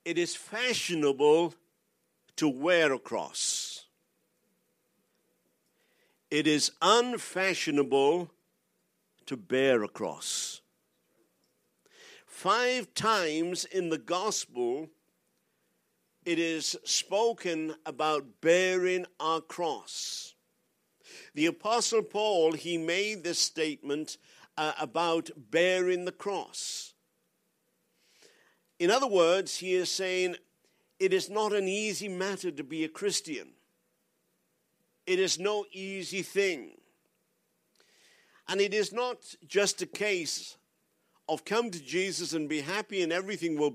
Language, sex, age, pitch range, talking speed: English, male, 50-69, 165-215 Hz, 105 wpm